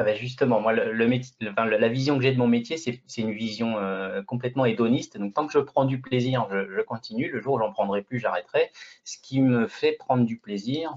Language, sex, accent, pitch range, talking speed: French, male, French, 115-175 Hz, 235 wpm